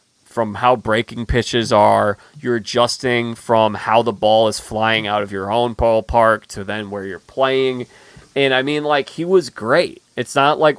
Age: 20-39